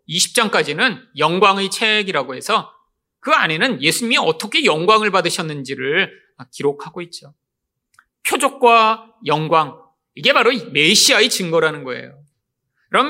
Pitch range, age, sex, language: 160-255 Hz, 40-59, male, Korean